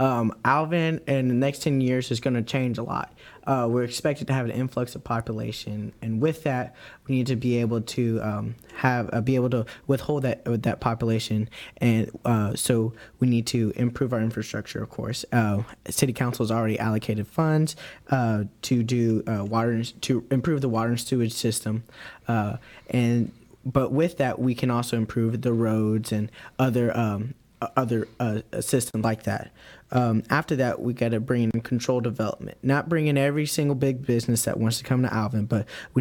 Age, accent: 20-39, American